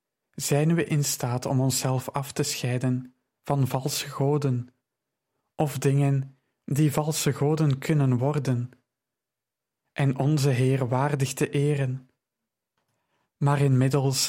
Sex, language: male, Dutch